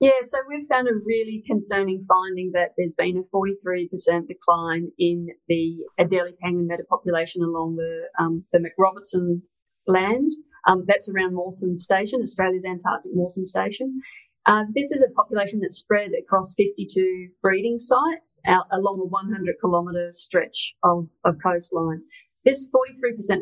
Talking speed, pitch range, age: 135 wpm, 175-205 Hz, 40-59